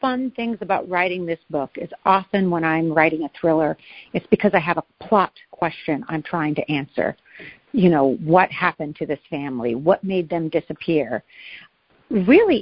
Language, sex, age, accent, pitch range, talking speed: English, female, 50-69, American, 170-240 Hz, 170 wpm